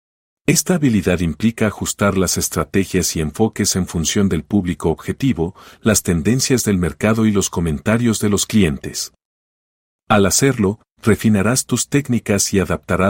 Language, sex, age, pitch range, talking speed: Spanish, male, 50-69, 90-110 Hz, 135 wpm